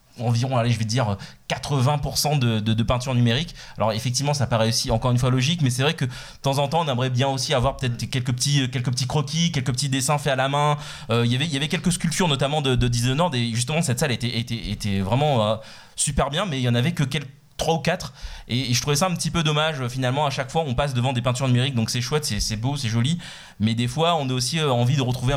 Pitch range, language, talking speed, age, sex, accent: 110-140 Hz, French, 275 wpm, 20-39, male, French